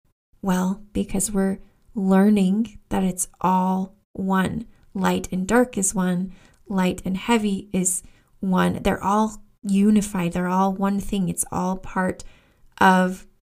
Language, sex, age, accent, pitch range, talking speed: English, female, 20-39, American, 185-215 Hz, 130 wpm